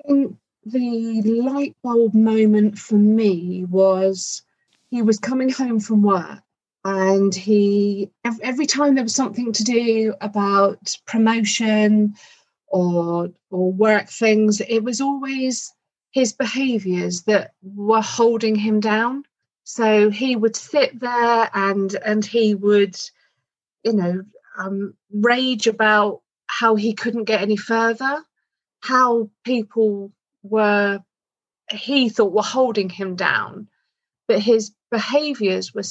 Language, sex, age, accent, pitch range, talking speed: English, female, 40-59, British, 200-240 Hz, 120 wpm